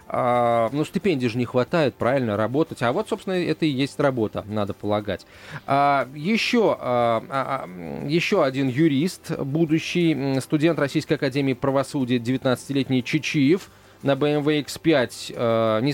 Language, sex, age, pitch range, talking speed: Russian, male, 20-39, 120-150 Hz, 135 wpm